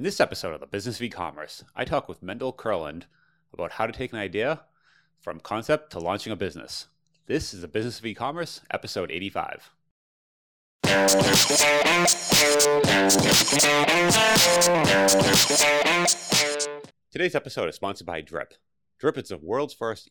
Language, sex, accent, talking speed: English, male, American, 130 wpm